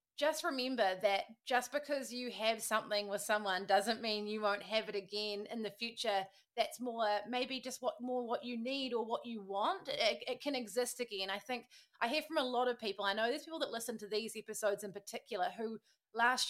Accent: Australian